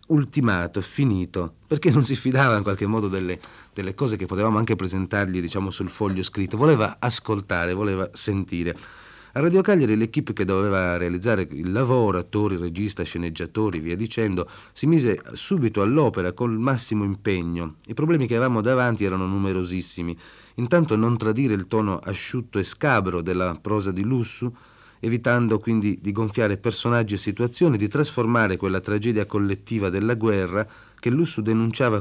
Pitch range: 95-120 Hz